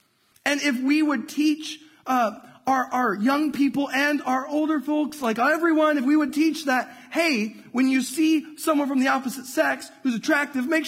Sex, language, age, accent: male, English, 30-49, American